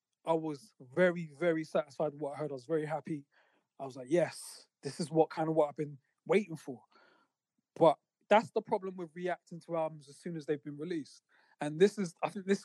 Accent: British